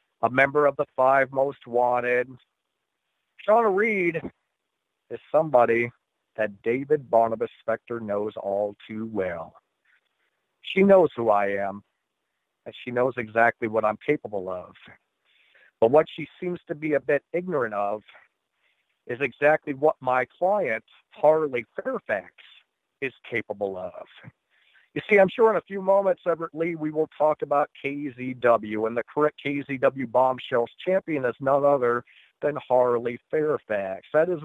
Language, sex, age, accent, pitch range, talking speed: English, male, 50-69, American, 115-155 Hz, 140 wpm